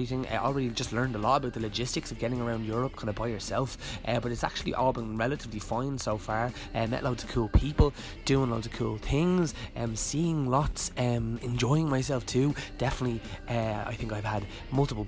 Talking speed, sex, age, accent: 215 wpm, male, 20-39, Irish